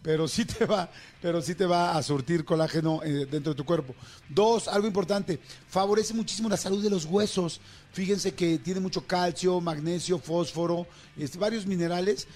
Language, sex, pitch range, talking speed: Spanish, male, 155-190 Hz, 170 wpm